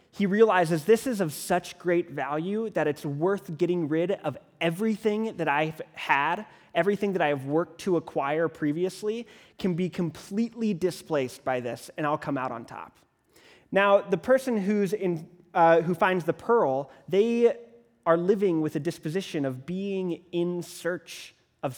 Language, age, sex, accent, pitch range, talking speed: English, 20-39, male, American, 150-190 Hz, 155 wpm